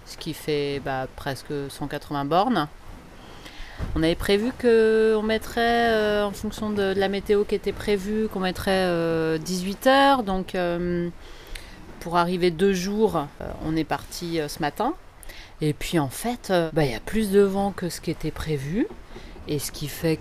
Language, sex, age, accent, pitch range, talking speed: French, female, 30-49, French, 145-175 Hz, 180 wpm